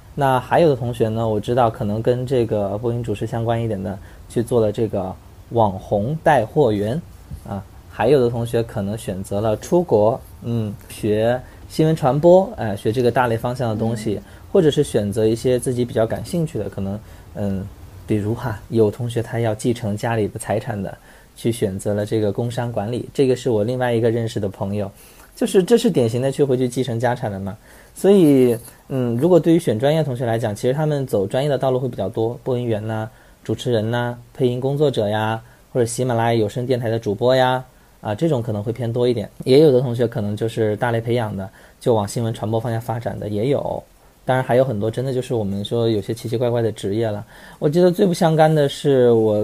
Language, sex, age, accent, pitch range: Chinese, male, 20-39, native, 105-130 Hz